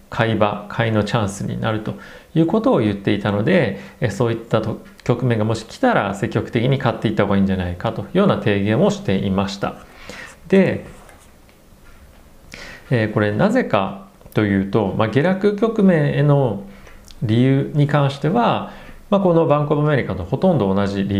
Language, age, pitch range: Japanese, 40-59, 105-160 Hz